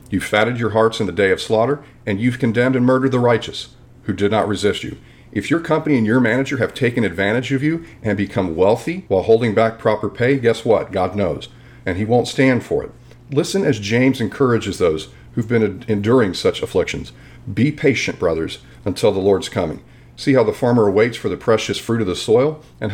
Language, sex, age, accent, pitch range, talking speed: English, male, 40-59, American, 105-135 Hz, 210 wpm